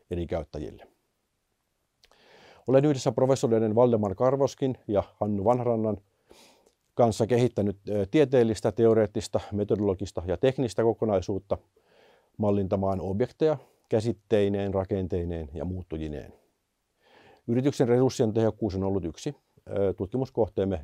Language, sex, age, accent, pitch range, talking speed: Finnish, male, 50-69, native, 95-120 Hz, 90 wpm